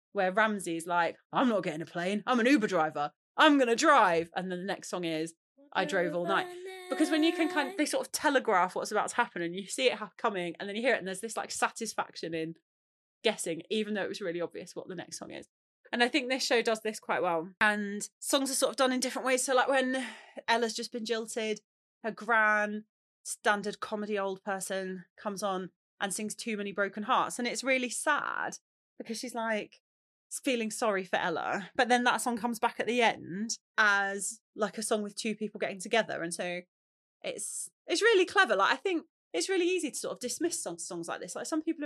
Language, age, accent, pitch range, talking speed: English, 30-49, British, 195-255 Hz, 230 wpm